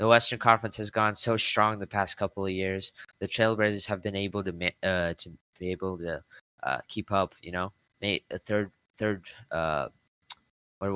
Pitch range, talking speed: 90-110 Hz, 190 wpm